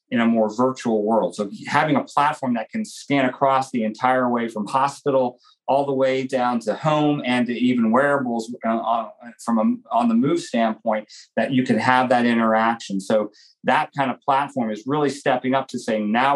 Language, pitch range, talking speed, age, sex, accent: English, 120-145 Hz, 185 wpm, 40-59, male, American